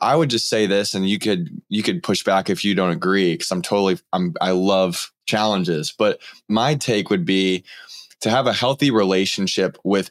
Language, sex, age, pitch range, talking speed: English, male, 20-39, 90-110 Hz, 200 wpm